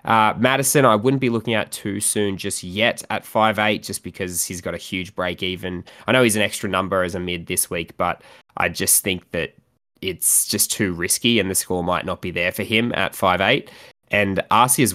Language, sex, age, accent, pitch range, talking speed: English, male, 20-39, Australian, 90-105 Hz, 230 wpm